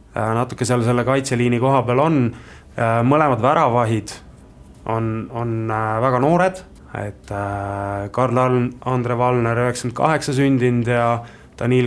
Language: English